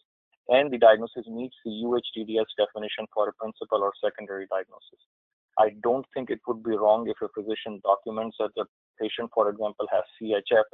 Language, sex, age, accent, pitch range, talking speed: English, male, 30-49, Indian, 110-120 Hz, 175 wpm